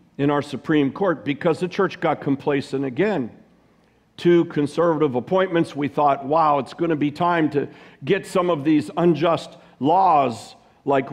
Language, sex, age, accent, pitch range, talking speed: English, male, 50-69, American, 130-165 Hz, 155 wpm